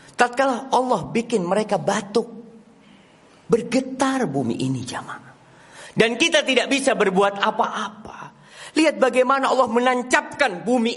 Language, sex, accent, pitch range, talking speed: Indonesian, male, native, 210-275 Hz, 110 wpm